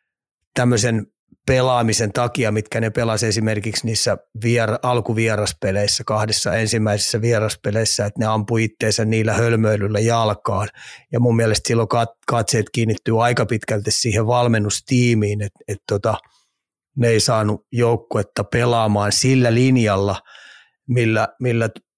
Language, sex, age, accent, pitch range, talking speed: Finnish, male, 30-49, native, 110-120 Hz, 115 wpm